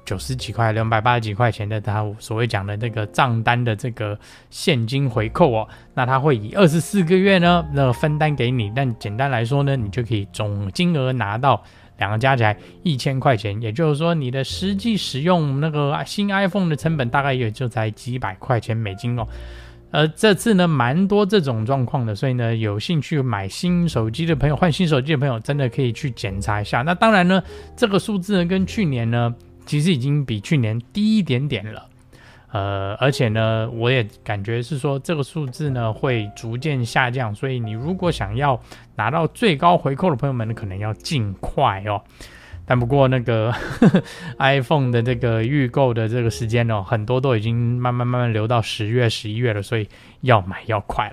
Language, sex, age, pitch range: Chinese, male, 20-39, 110-150 Hz